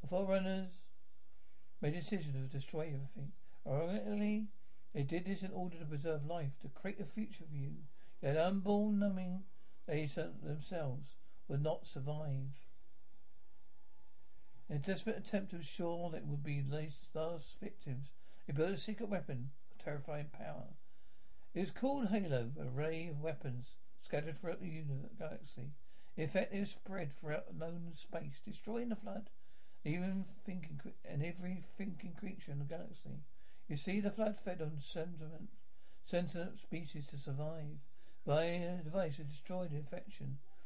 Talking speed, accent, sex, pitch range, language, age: 155 wpm, British, male, 145-190 Hz, English, 60-79